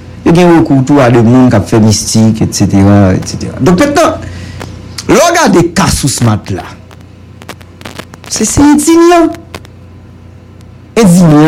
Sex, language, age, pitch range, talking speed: male, English, 50-69, 105-175 Hz, 95 wpm